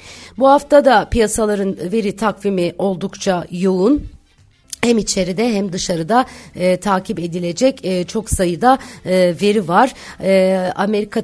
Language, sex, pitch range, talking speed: Turkish, female, 175-210 Hz, 125 wpm